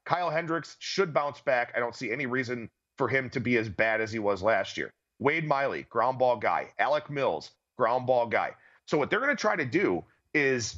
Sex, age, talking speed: male, 40-59, 215 wpm